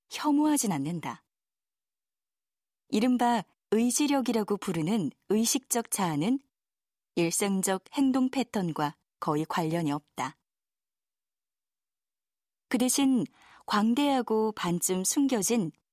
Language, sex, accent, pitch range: Korean, female, native, 180-255 Hz